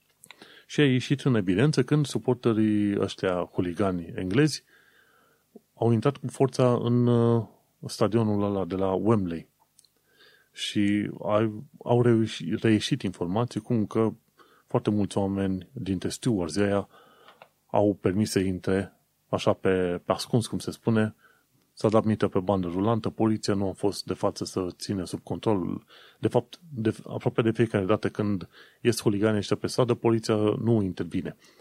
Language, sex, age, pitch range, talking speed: Romanian, male, 30-49, 95-115 Hz, 140 wpm